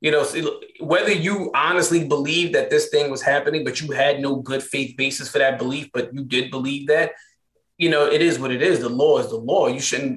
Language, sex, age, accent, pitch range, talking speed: English, male, 30-49, American, 135-180 Hz, 235 wpm